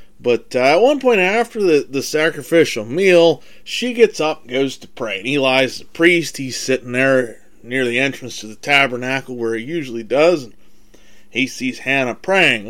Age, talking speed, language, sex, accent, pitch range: 30-49, 185 wpm, English, male, American, 120-175 Hz